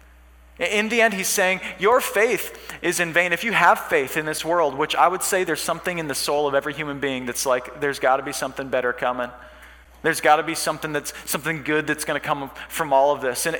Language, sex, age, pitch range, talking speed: English, male, 20-39, 145-185 Hz, 235 wpm